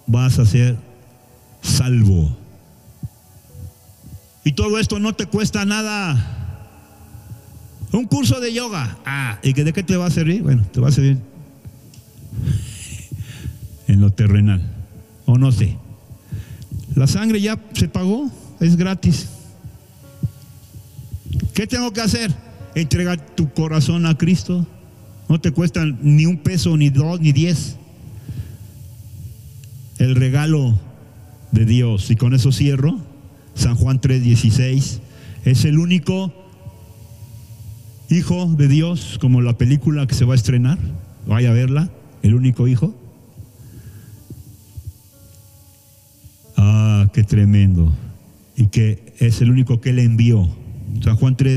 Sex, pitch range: male, 110-145 Hz